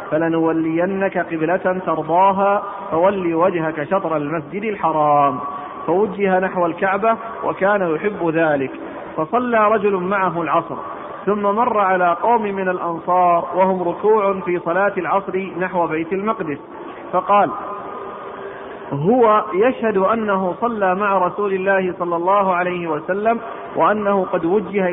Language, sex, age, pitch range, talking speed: Arabic, male, 40-59, 165-195 Hz, 115 wpm